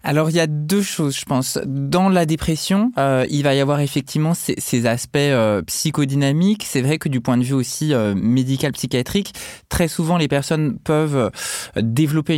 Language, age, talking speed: French, 20-39, 190 wpm